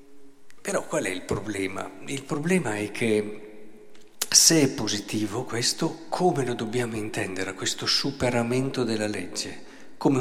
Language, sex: Italian, male